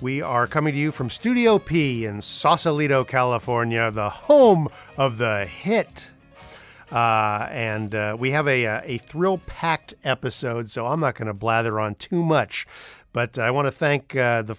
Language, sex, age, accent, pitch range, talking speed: English, male, 50-69, American, 115-155 Hz, 170 wpm